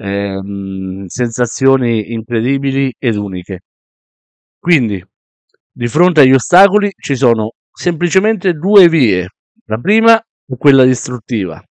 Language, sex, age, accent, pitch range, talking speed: Italian, male, 50-69, native, 105-135 Hz, 95 wpm